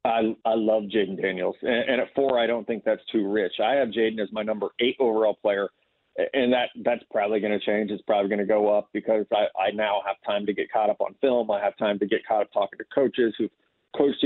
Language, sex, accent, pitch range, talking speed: English, male, American, 105-120 Hz, 255 wpm